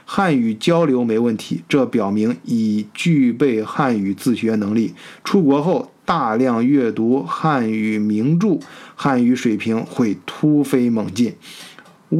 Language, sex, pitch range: Chinese, male, 115-165 Hz